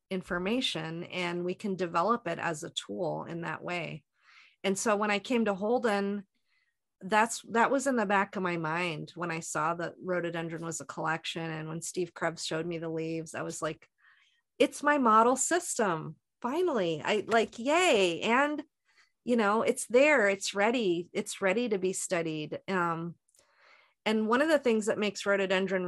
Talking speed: 175 wpm